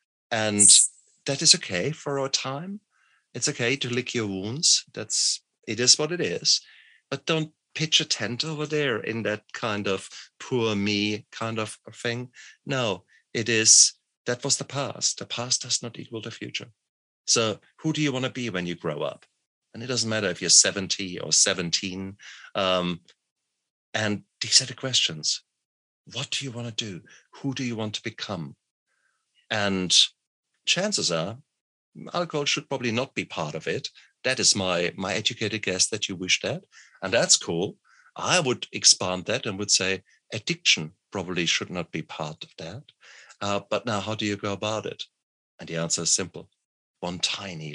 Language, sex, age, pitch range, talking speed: English, male, 50-69, 95-130 Hz, 180 wpm